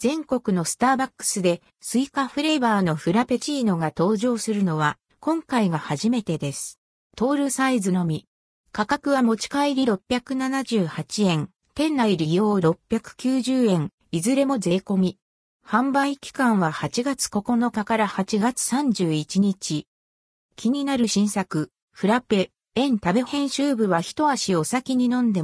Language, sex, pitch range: Japanese, female, 180-260 Hz